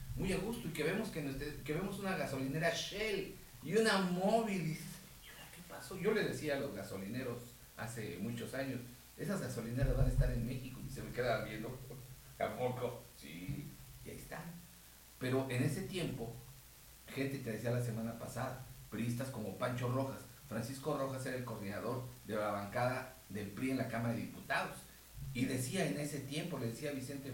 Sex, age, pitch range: male, 50-69, 125-160 Hz